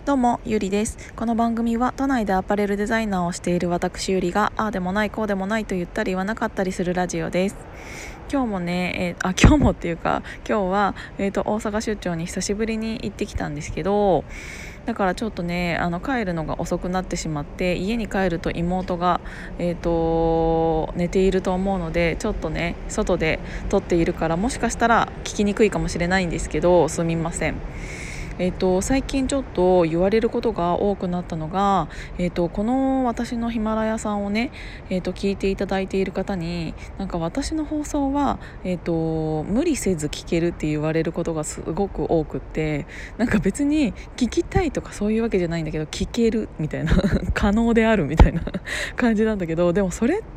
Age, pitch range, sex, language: 20-39, 165-220 Hz, female, Japanese